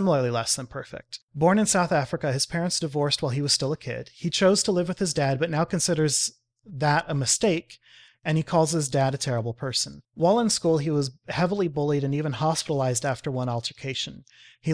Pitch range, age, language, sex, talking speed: 135-165 Hz, 30-49, English, male, 210 wpm